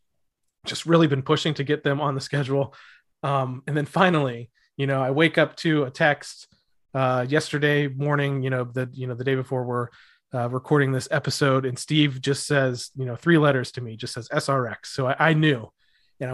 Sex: male